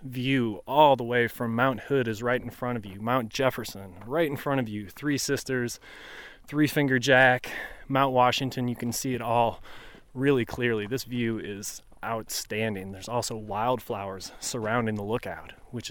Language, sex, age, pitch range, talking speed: English, male, 20-39, 115-140 Hz, 170 wpm